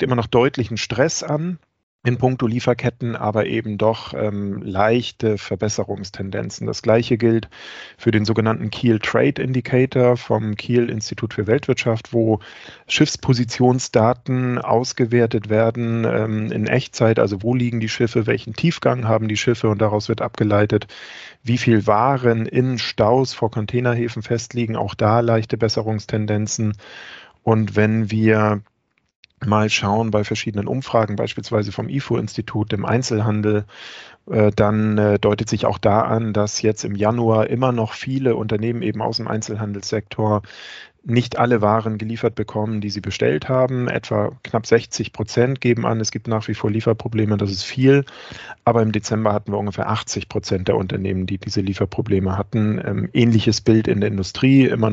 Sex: male